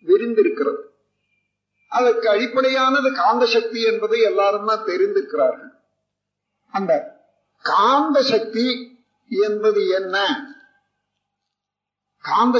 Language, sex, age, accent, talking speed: Tamil, male, 50-69, native, 55 wpm